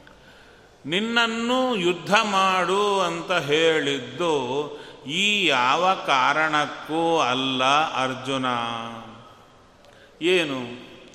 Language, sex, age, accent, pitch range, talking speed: Kannada, male, 40-59, native, 140-180 Hz, 60 wpm